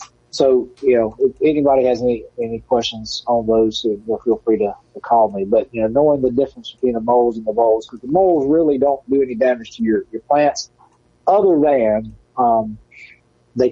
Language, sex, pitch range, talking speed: English, male, 105-135 Hz, 205 wpm